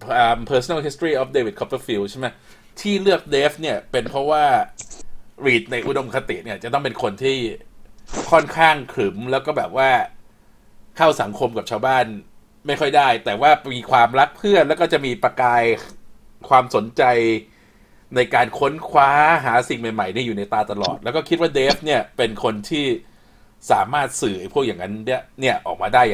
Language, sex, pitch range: Thai, male, 115-165 Hz